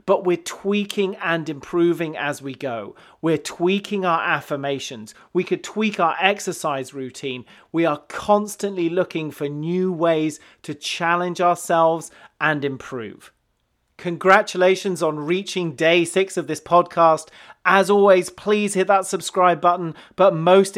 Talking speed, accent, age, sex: 135 wpm, British, 30-49, male